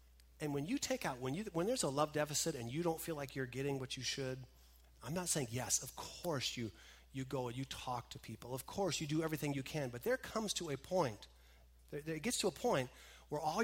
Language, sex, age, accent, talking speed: English, male, 40-59, American, 255 wpm